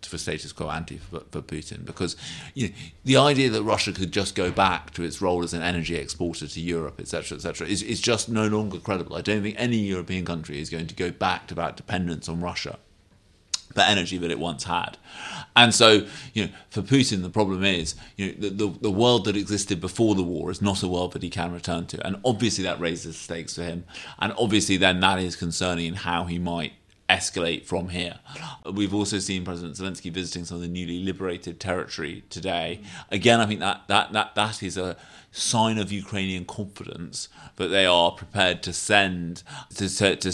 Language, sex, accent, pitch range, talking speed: English, male, British, 85-100 Hz, 215 wpm